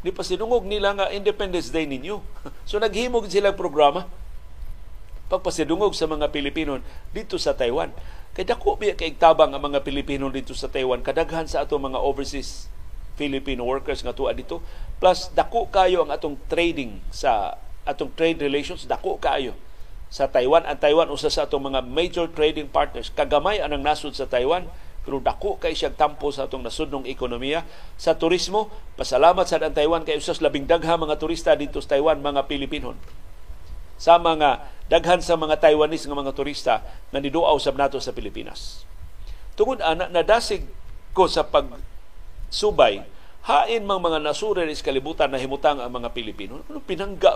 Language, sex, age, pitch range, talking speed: Filipino, male, 50-69, 135-175 Hz, 160 wpm